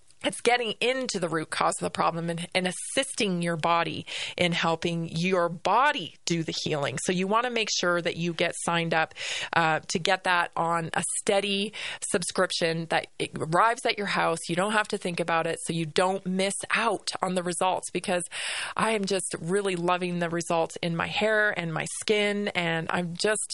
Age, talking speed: 20-39, 200 wpm